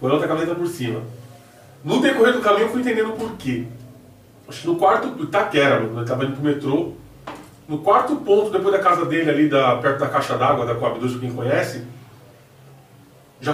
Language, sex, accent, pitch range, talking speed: Portuguese, male, Brazilian, 135-195 Hz, 195 wpm